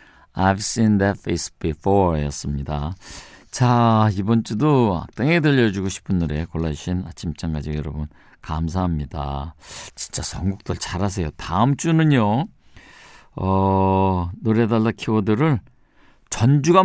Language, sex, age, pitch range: Korean, male, 50-69, 90-120 Hz